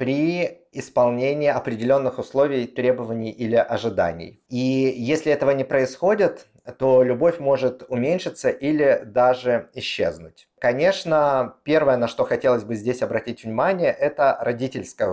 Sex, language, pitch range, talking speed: male, Russian, 120-145 Hz, 120 wpm